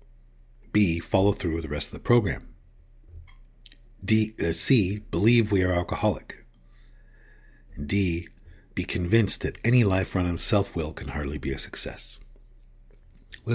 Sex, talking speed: male, 135 wpm